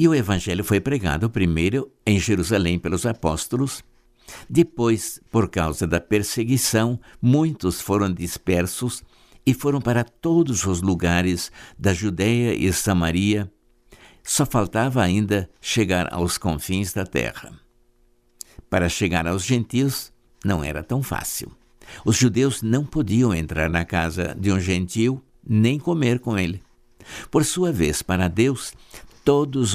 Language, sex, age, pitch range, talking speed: Portuguese, male, 60-79, 90-120 Hz, 130 wpm